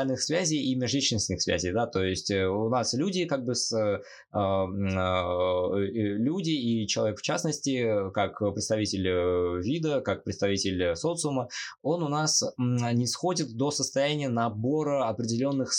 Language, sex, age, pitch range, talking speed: Russian, male, 20-39, 100-140 Hz, 135 wpm